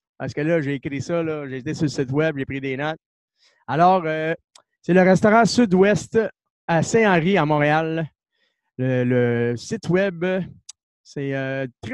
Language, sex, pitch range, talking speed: French, male, 145-195 Hz, 155 wpm